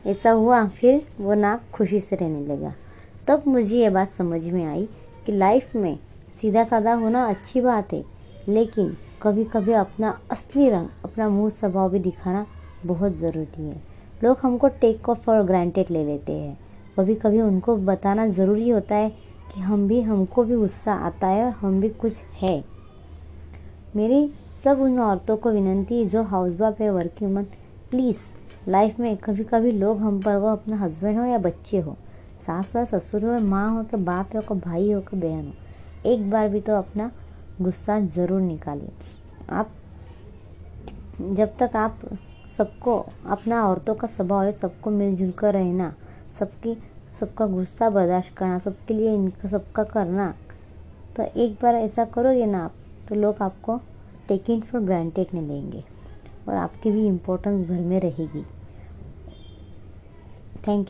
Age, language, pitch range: 20-39, Hindi, 175-220 Hz